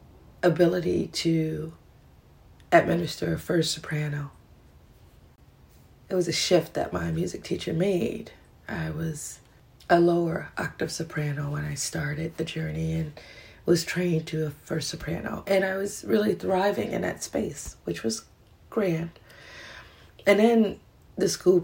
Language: English